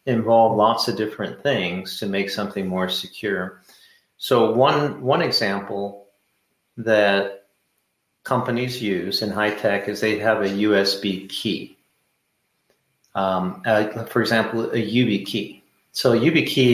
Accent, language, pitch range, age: American, English, 100-115 Hz, 40-59